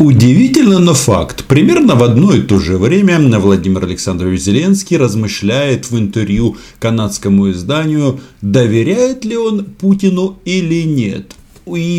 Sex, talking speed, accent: male, 125 wpm, native